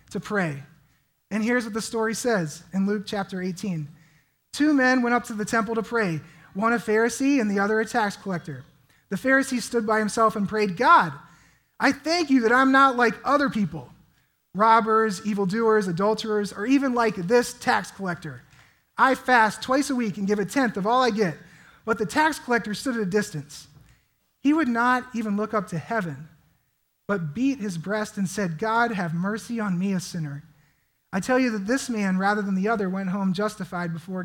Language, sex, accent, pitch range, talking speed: English, male, American, 170-225 Hz, 195 wpm